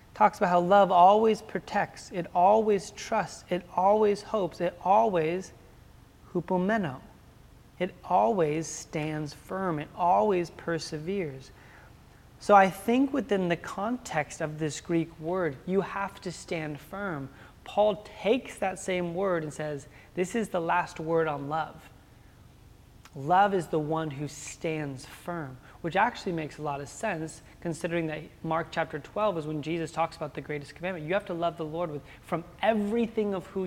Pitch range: 150-190 Hz